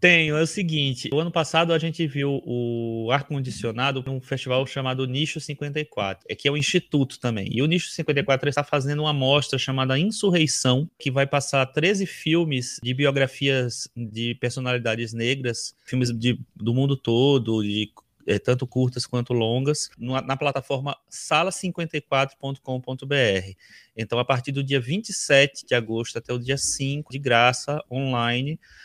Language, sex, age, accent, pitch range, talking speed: Portuguese, male, 20-39, Brazilian, 125-150 Hz, 155 wpm